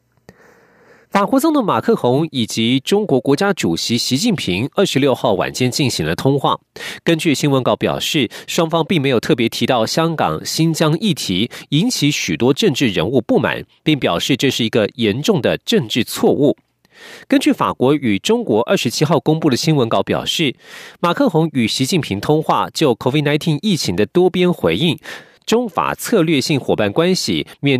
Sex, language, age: male, Chinese, 40-59